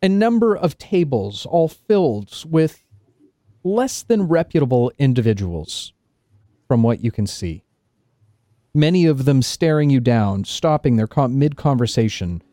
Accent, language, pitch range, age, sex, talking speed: American, English, 110-165 Hz, 40-59, male, 110 wpm